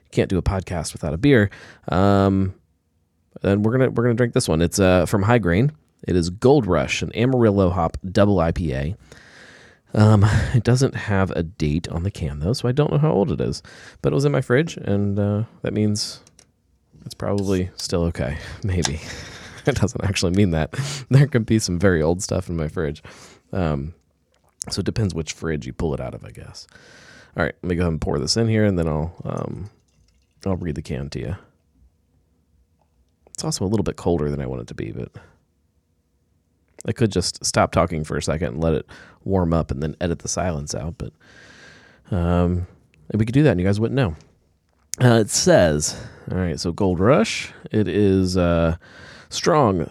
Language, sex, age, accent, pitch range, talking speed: English, male, 20-39, American, 80-110 Hz, 205 wpm